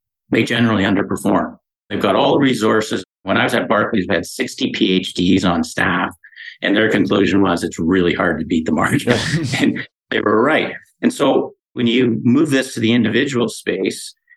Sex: male